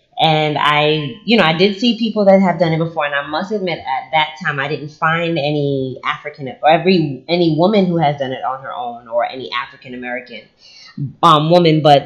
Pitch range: 140-175 Hz